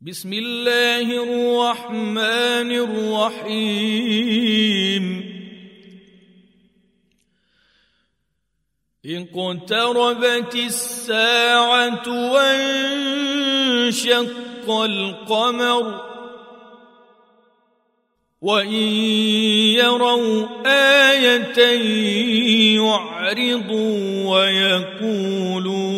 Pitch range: 195-240 Hz